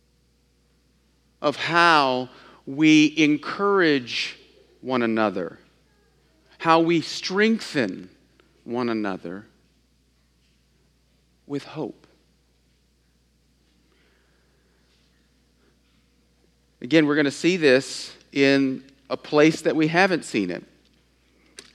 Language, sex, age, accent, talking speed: English, male, 40-59, American, 75 wpm